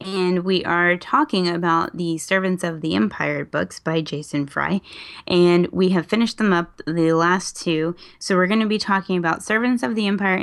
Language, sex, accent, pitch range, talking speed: English, female, American, 160-195 Hz, 195 wpm